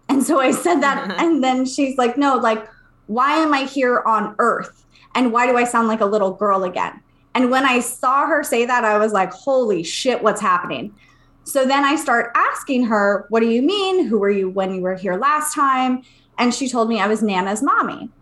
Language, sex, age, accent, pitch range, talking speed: English, female, 20-39, American, 200-255 Hz, 225 wpm